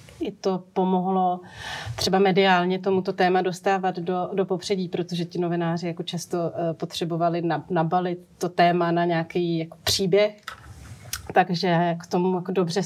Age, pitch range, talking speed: 30-49, 175-205 Hz, 120 wpm